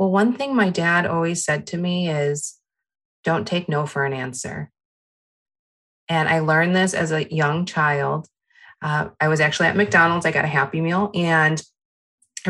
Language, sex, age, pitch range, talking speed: English, female, 20-39, 140-170 Hz, 180 wpm